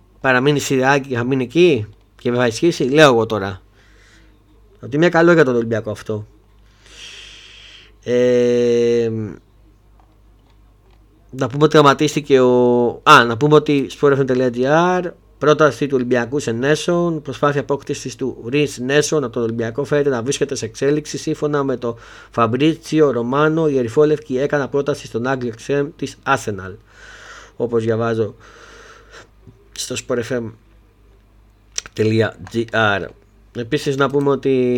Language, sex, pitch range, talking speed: Greek, male, 110-140 Hz, 120 wpm